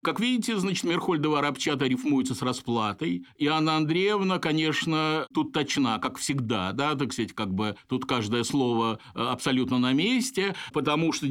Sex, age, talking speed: male, 50-69, 150 wpm